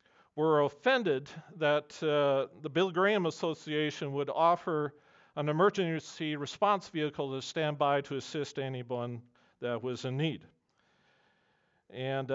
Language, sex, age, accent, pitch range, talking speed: English, male, 40-59, American, 140-170 Hz, 120 wpm